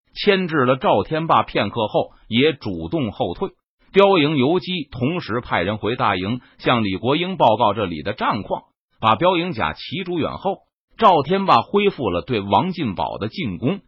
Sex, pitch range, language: male, 125-190 Hz, Chinese